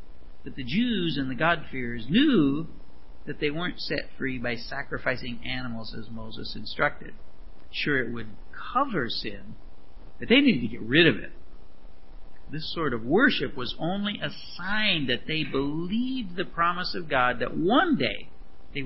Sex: male